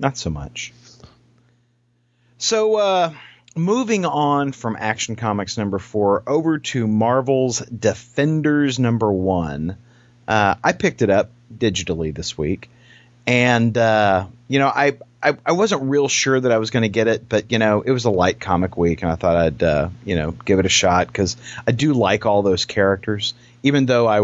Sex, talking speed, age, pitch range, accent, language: male, 180 wpm, 40-59, 95-125 Hz, American, English